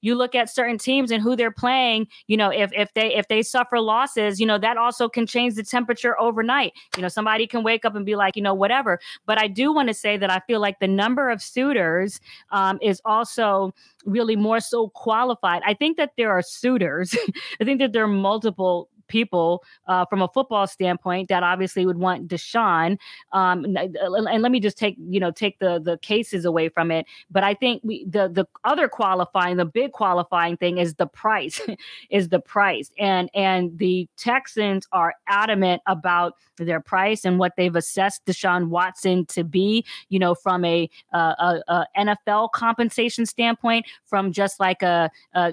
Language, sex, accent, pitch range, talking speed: English, female, American, 180-230 Hz, 195 wpm